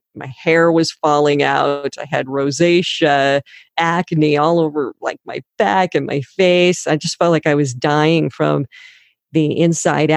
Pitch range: 150-170 Hz